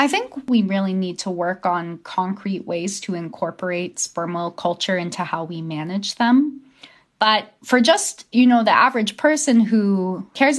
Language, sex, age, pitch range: English, female, 20-39, 175-215 Hz